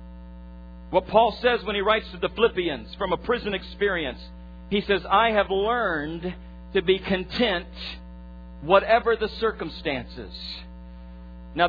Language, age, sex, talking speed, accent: English, 50-69, male, 130 wpm, American